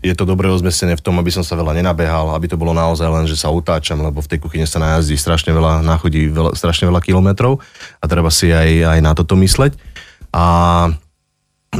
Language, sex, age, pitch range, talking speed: Slovak, male, 30-49, 80-95 Hz, 210 wpm